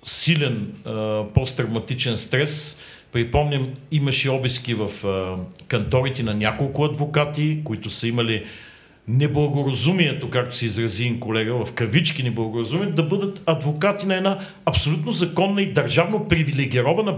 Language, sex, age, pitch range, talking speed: Bulgarian, male, 50-69, 115-160 Hz, 120 wpm